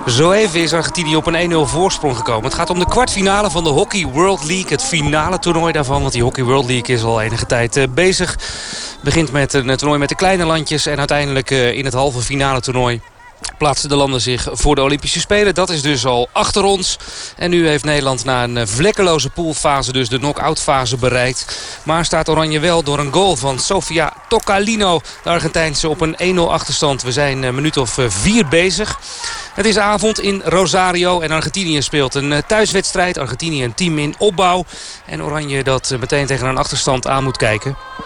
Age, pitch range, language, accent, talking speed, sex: 30-49, 135-175 Hz, Dutch, Dutch, 195 wpm, male